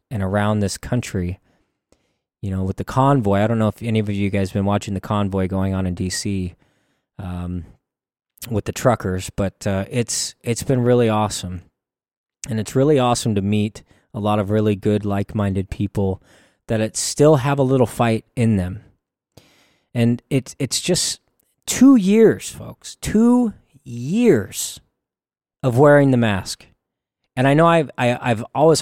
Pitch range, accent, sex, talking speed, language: 105-145 Hz, American, male, 160 wpm, English